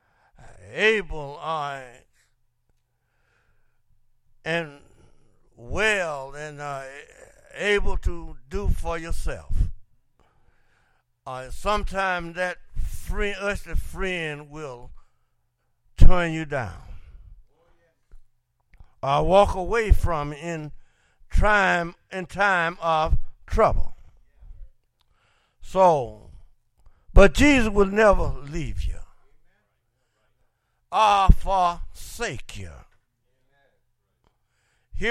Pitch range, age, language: 120-190 Hz, 60-79, English